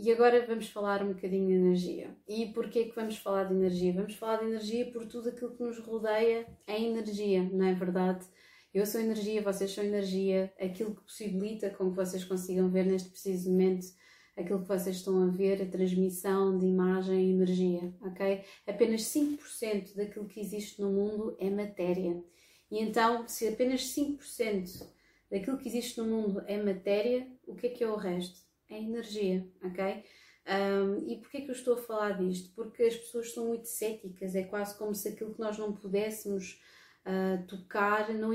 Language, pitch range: Portuguese, 190-225 Hz